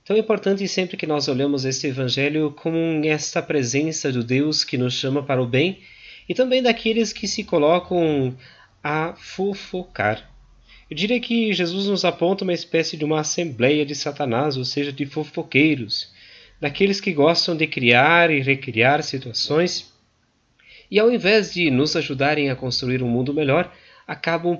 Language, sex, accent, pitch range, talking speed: Portuguese, male, Brazilian, 130-170 Hz, 160 wpm